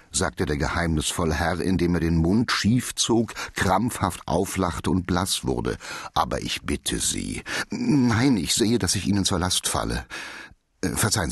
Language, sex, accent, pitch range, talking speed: German, male, German, 85-125 Hz, 155 wpm